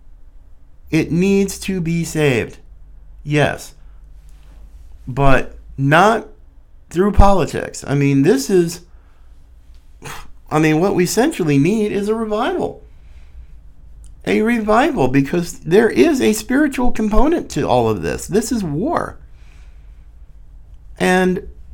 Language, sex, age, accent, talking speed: English, male, 50-69, American, 110 wpm